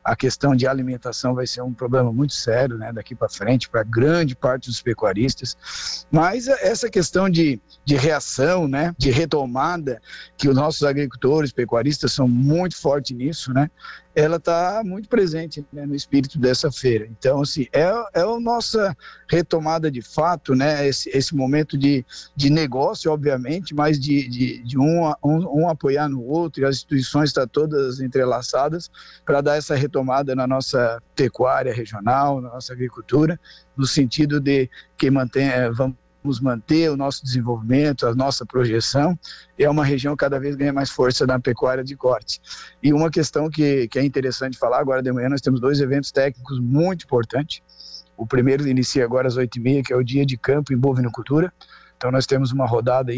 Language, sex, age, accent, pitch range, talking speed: Portuguese, male, 50-69, Brazilian, 125-150 Hz, 180 wpm